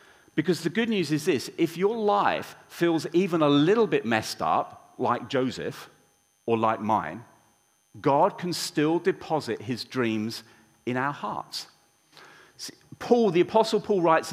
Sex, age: male, 40-59